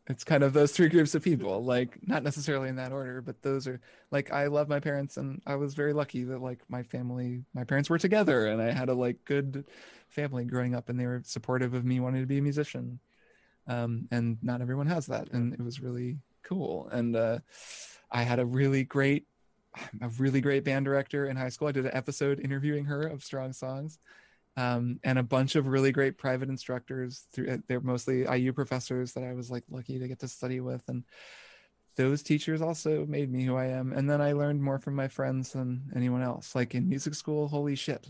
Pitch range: 125-145 Hz